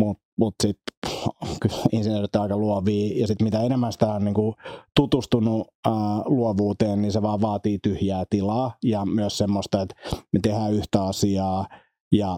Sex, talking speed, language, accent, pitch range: male, 155 wpm, Finnish, native, 100-115 Hz